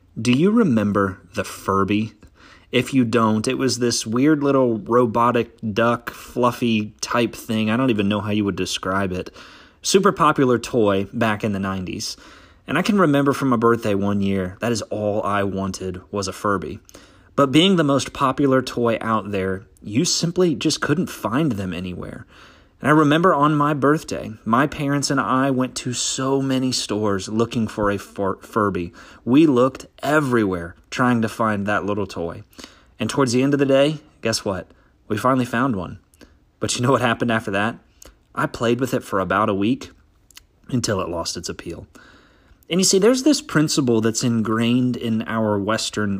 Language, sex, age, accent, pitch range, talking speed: English, male, 30-49, American, 100-130 Hz, 180 wpm